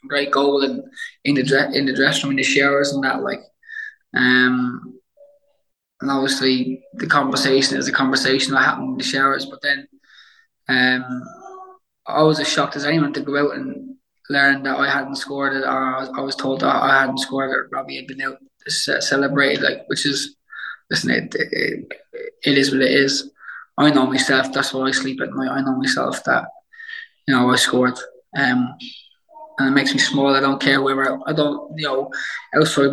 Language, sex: English, male